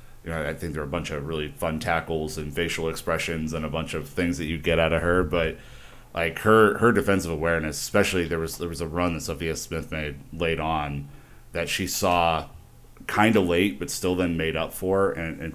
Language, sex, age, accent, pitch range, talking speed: English, male, 30-49, American, 80-95 Hz, 220 wpm